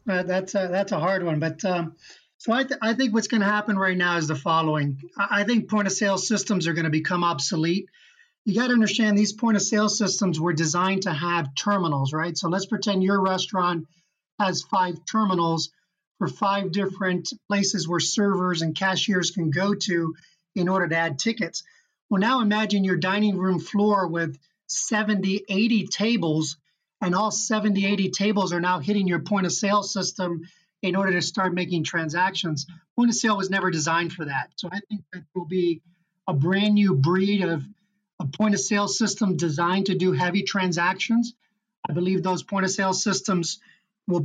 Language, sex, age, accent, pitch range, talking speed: English, male, 40-59, American, 175-205 Hz, 190 wpm